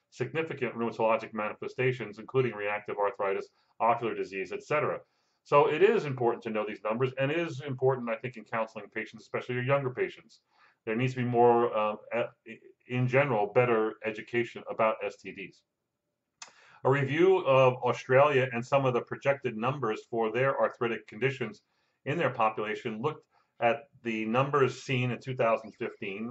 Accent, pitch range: American, 110-135 Hz